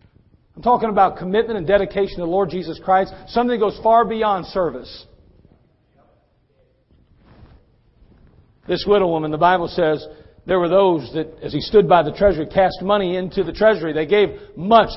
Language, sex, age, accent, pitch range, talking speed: English, male, 50-69, American, 170-285 Hz, 165 wpm